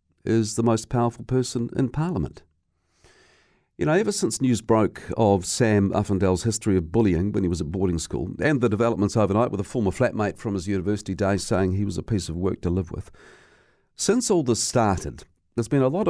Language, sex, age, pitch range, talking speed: English, male, 50-69, 95-120 Hz, 205 wpm